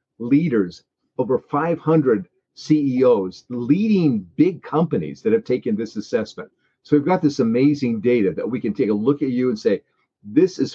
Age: 50-69